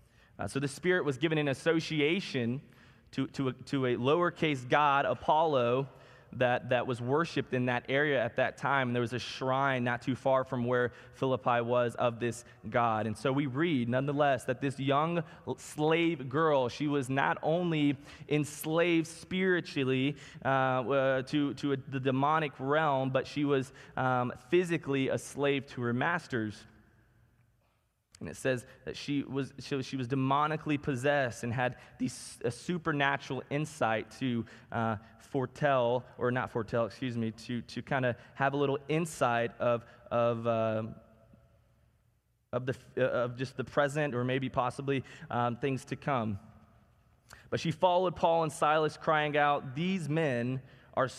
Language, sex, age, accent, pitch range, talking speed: English, male, 20-39, American, 120-145 Hz, 155 wpm